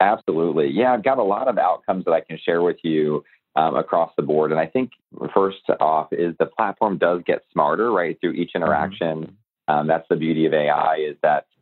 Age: 40-59